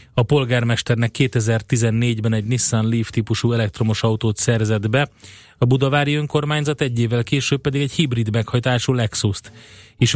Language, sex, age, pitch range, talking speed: Hungarian, male, 30-49, 110-135 Hz, 135 wpm